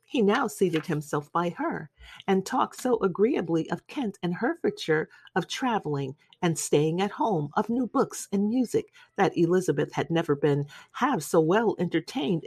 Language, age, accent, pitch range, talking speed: English, 40-59, American, 160-245 Hz, 165 wpm